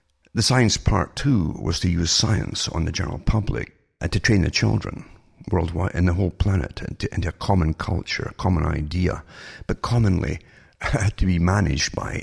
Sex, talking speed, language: male, 180 wpm, English